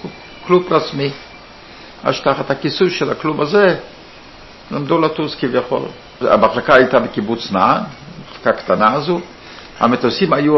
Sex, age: male, 60-79